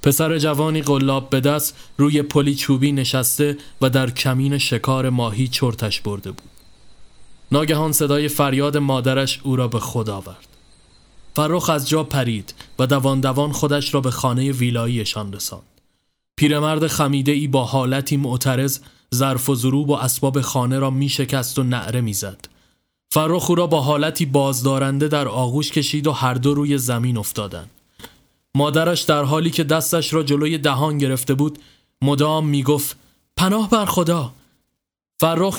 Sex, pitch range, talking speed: male, 130-155 Hz, 150 wpm